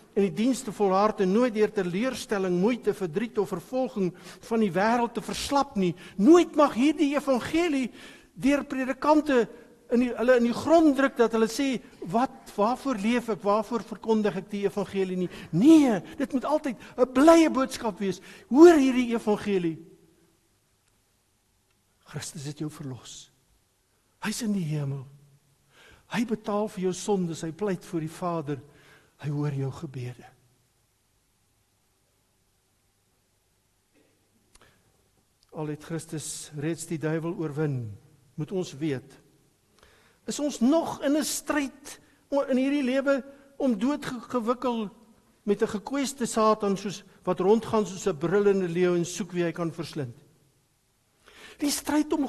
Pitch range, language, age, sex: 150-250 Hz, English, 60-79, male